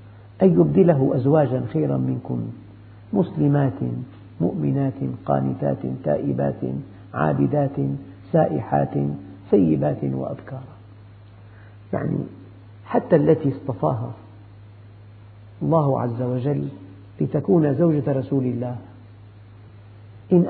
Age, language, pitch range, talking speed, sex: 50-69, Arabic, 100-160 Hz, 70 wpm, male